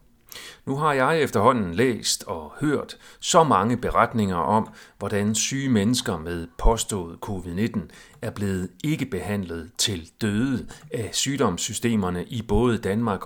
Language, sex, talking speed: Danish, male, 125 wpm